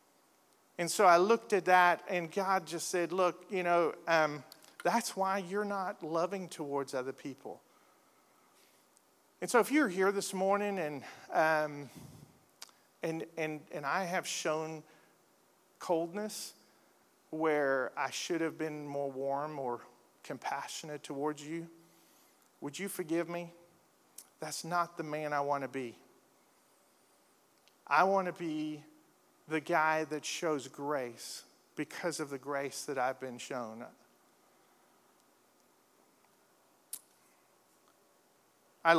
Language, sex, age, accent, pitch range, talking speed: English, male, 50-69, American, 140-175 Hz, 115 wpm